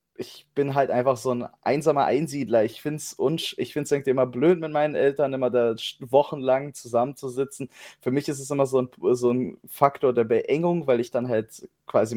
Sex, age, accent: male, 20-39, German